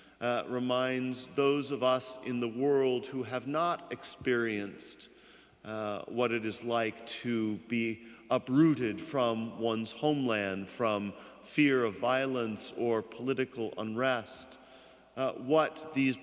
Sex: male